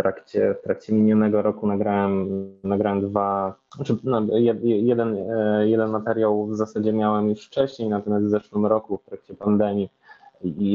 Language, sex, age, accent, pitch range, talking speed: Polish, male, 20-39, native, 95-105 Hz, 135 wpm